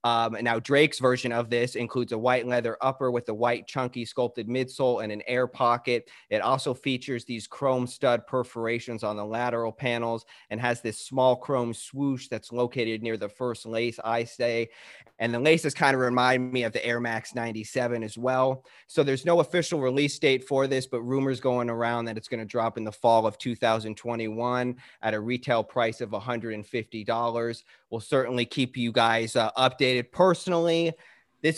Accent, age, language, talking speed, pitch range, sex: American, 30-49, English, 185 wpm, 115-135 Hz, male